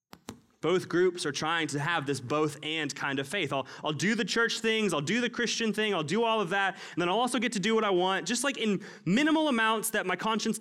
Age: 20-39